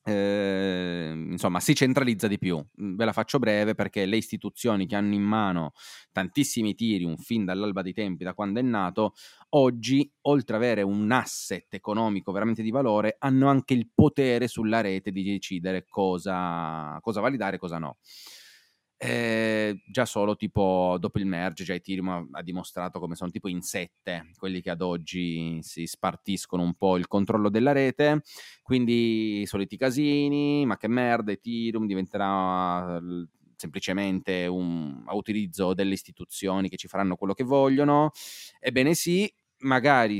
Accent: native